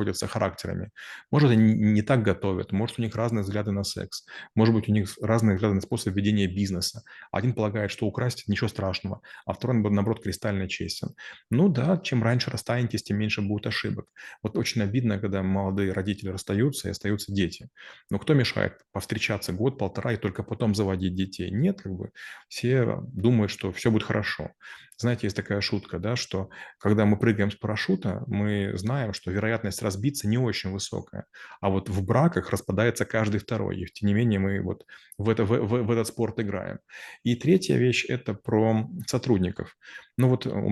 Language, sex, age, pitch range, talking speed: Russian, male, 30-49, 100-115 Hz, 180 wpm